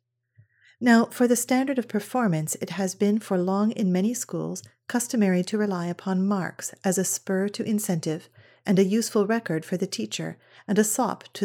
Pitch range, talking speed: 170-215 Hz, 185 wpm